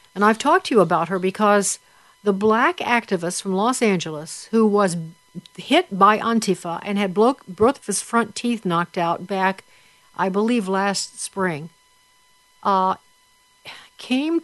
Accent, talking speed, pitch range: American, 145 wpm, 195-245 Hz